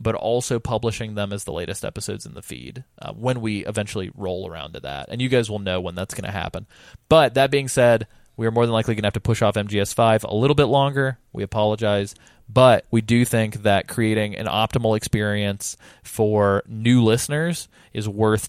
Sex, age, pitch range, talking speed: male, 20-39, 100-120 Hz, 210 wpm